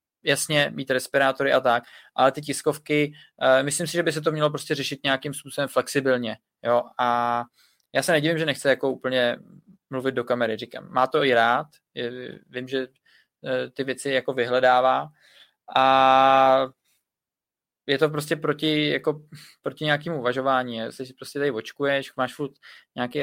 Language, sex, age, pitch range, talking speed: Czech, male, 20-39, 130-145 Hz, 150 wpm